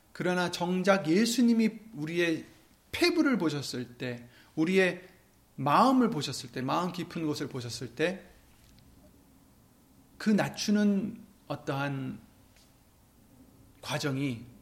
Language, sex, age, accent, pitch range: Korean, male, 30-49, native, 120-200 Hz